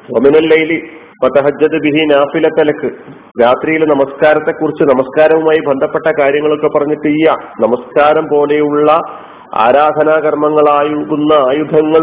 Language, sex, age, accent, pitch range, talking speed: Malayalam, male, 40-59, native, 140-160 Hz, 65 wpm